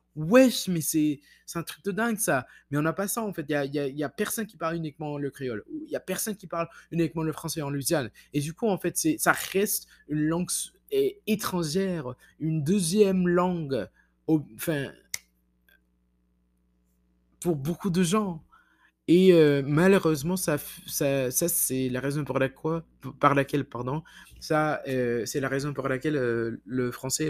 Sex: male